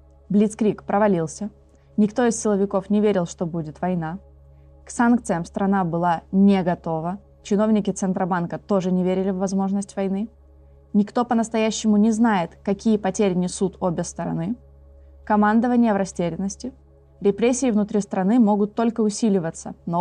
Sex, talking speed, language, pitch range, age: female, 130 wpm, Russian, 170-210 Hz, 20-39